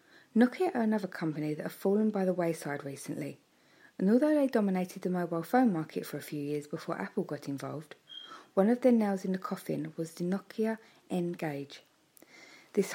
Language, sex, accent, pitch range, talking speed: English, female, British, 165-215 Hz, 180 wpm